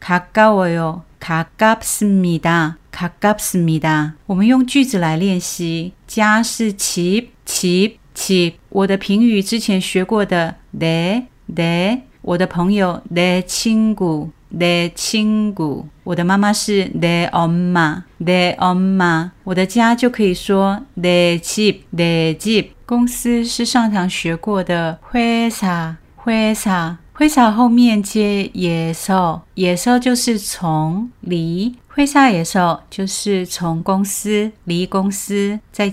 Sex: female